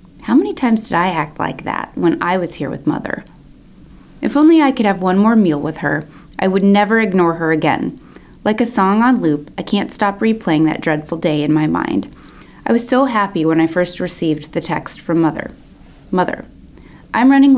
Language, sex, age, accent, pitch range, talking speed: English, female, 30-49, American, 160-235 Hz, 205 wpm